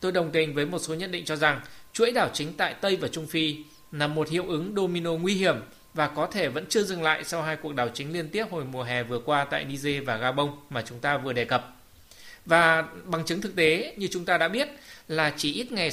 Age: 20-39